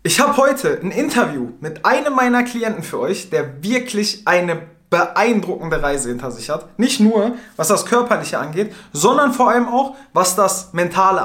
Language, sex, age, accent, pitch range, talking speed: German, male, 20-39, German, 165-230 Hz, 170 wpm